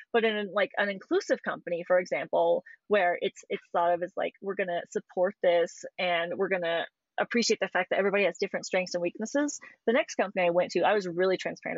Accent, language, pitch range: American, English, 190-250 Hz